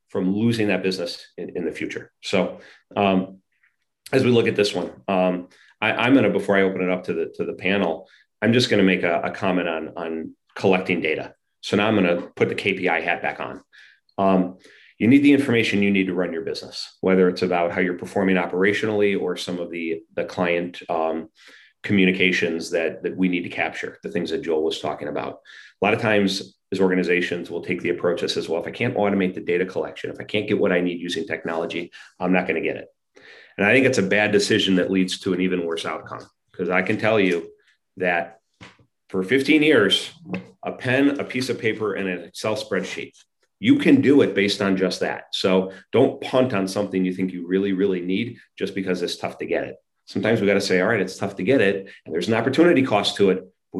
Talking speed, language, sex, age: 230 wpm, English, male, 30-49